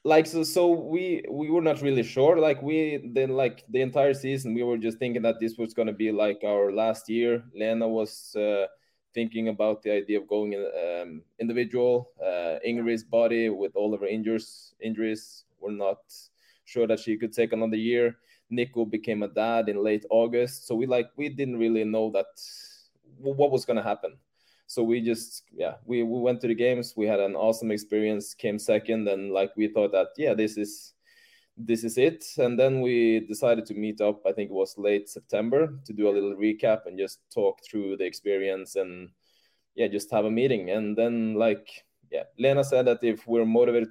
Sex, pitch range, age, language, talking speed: male, 105-120 Hz, 20-39, English, 200 wpm